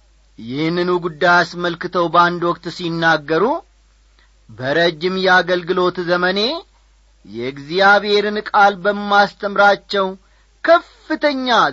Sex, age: male, 40-59